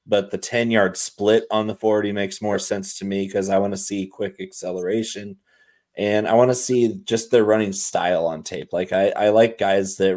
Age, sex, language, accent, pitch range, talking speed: 30-49, male, English, American, 95-110 Hz, 210 wpm